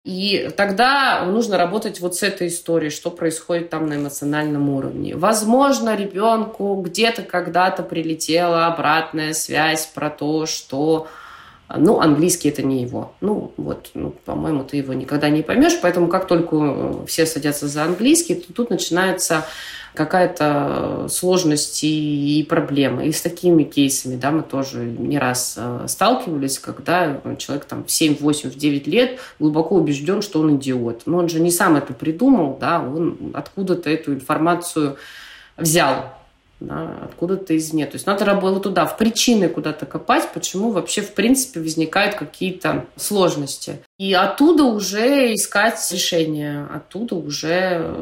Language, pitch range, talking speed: Russian, 150-185 Hz, 145 wpm